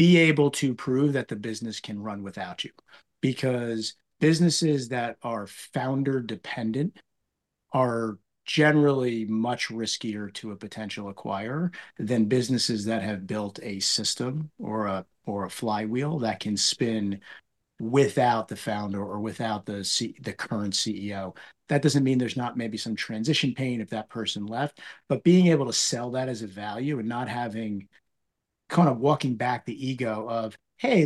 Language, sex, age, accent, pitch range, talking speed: English, male, 50-69, American, 110-140 Hz, 160 wpm